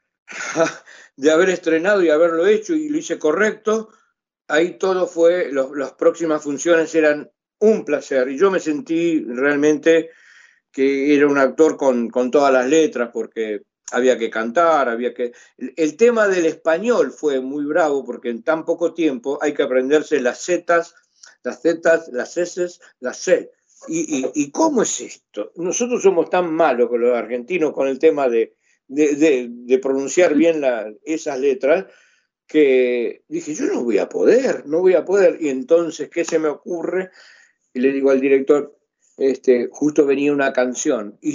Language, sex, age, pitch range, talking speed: Spanish, male, 60-79, 135-210 Hz, 170 wpm